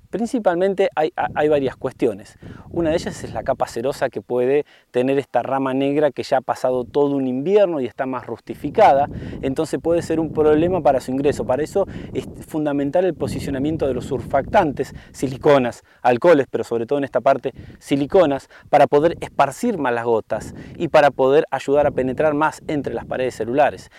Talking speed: 180 wpm